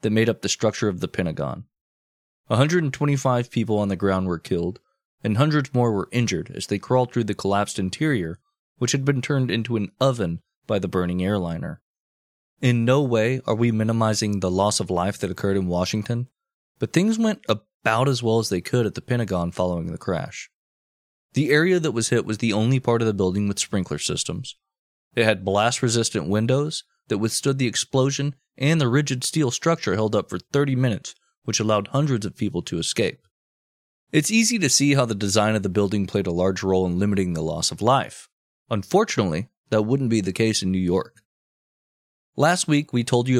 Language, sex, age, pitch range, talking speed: English, male, 20-39, 95-125 Hz, 195 wpm